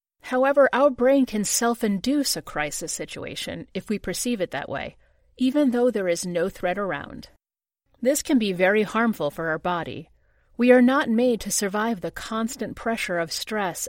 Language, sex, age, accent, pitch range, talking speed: English, female, 40-59, American, 180-245 Hz, 175 wpm